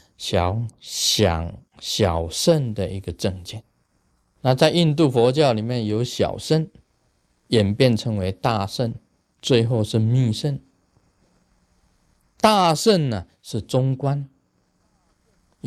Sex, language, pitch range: male, Chinese, 95-125 Hz